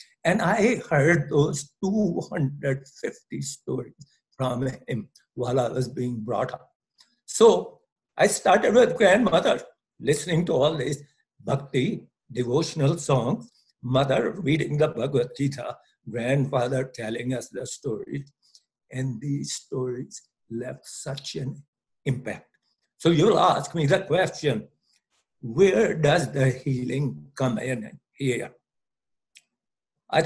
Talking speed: 115 wpm